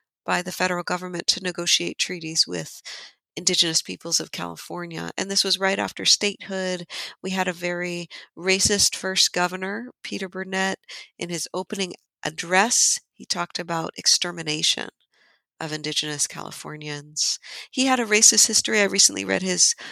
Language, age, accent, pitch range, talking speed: English, 50-69, American, 170-205 Hz, 140 wpm